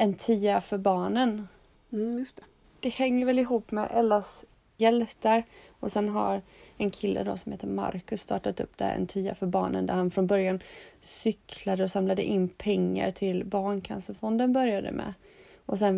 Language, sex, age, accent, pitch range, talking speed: Swedish, female, 30-49, native, 185-215 Hz, 170 wpm